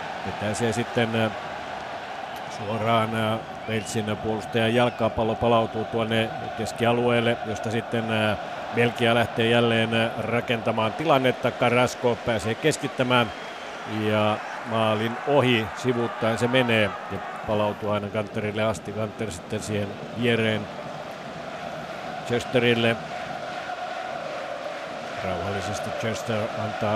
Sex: male